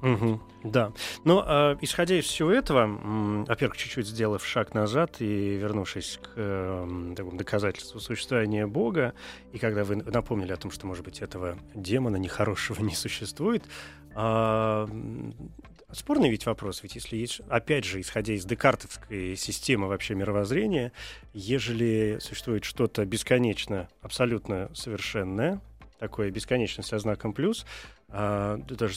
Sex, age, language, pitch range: male, 30-49, Russian, 100-120 Hz